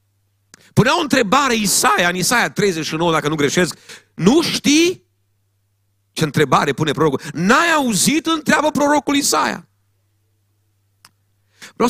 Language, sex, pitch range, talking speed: Romanian, male, 100-160 Hz, 110 wpm